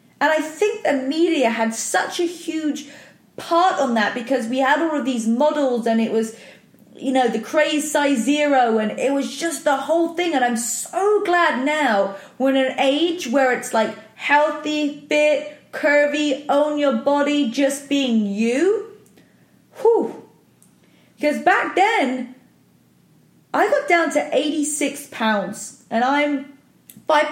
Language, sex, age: English, female, 20-39